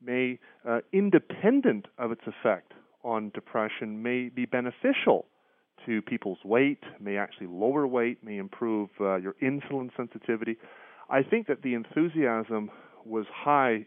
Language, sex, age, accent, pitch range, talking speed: English, male, 40-59, American, 100-145 Hz, 135 wpm